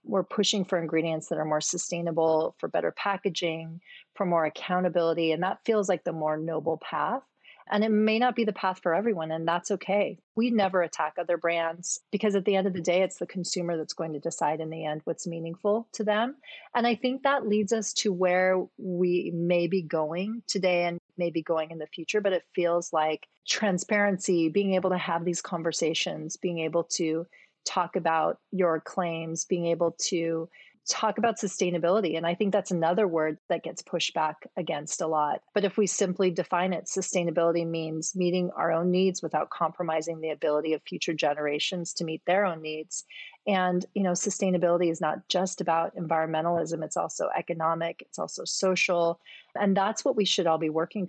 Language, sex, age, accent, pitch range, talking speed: English, female, 30-49, American, 165-195 Hz, 190 wpm